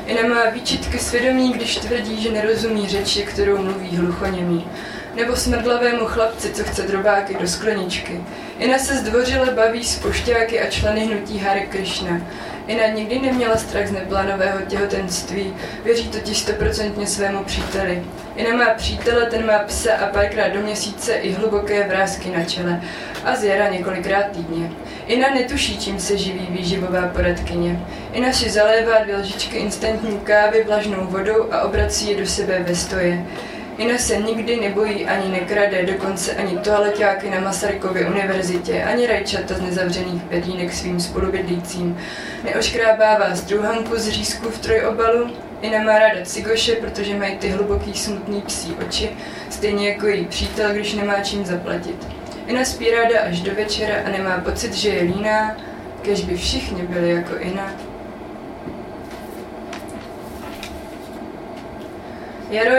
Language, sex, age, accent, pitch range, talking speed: Czech, female, 20-39, native, 190-225 Hz, 140 wpm